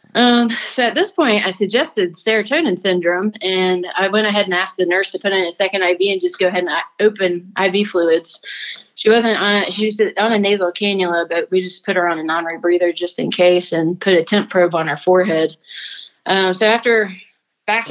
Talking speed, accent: 205 wpm, American